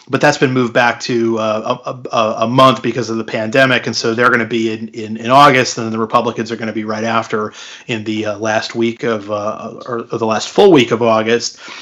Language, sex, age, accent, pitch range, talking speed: Italian, male, 30-49, American, 115-140 Hz, 255 wpm